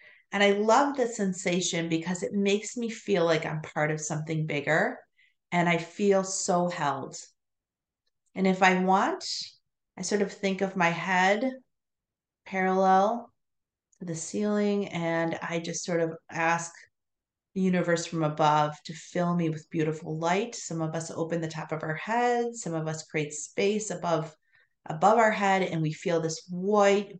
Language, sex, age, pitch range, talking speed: English, female, 30-49, 160-195 Hz, 165 wpm